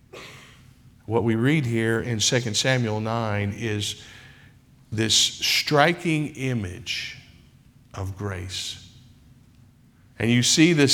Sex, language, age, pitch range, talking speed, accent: male, English, 50-69, 125-150 Hz, 100 wpm, American